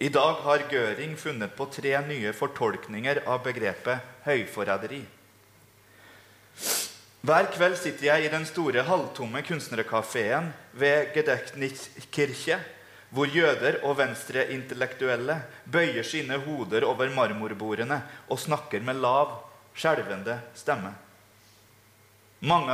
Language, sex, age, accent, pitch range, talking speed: English, male, 30-49, Swedish, 105-150 Hz, 105 wpm